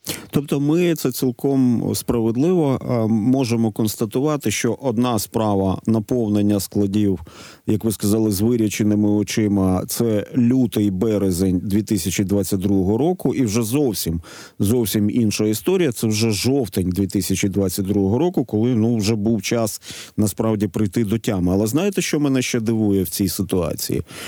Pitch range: 100-130 Hz